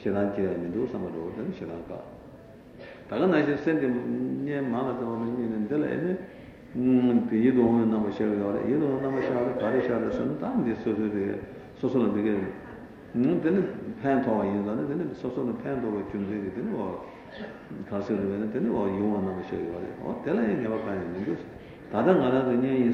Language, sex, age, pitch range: Italian, male, 60-79, 100-125 Hz